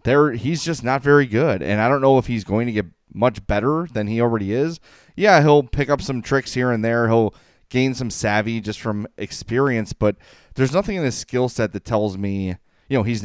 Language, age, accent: English, 30-49, American